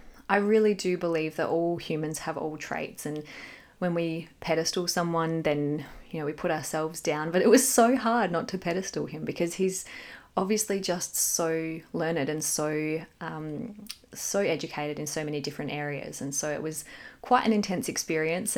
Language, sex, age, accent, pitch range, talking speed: English, female, 20-39, Australian, 155-185 Hz, 180 wpm